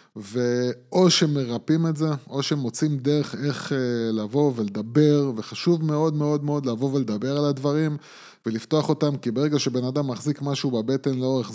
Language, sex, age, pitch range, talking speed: Hebrew, male, 20-39, 125-155 Hz, 145 wpm